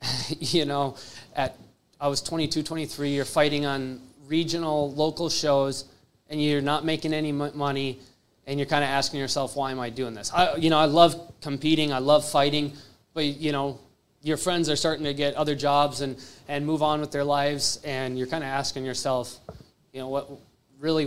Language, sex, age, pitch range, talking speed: English, male, 20-39, 130-150 Hz, 195 wpm